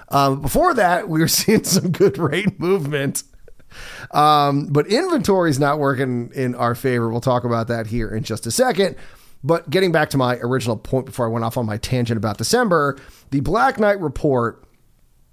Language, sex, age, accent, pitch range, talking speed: English, male, 30-49, American, 120-150 Hz, 190 wpm